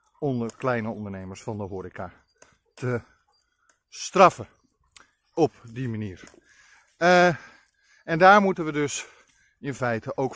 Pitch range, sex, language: 105-135 Hz, male, Dutch